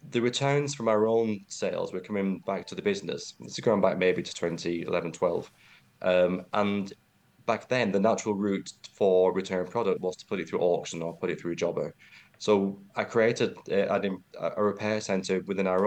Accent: British